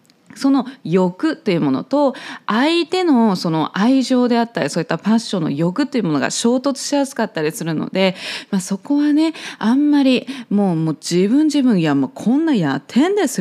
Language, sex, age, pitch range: Japanese, female, 20-39, 185-280 Hz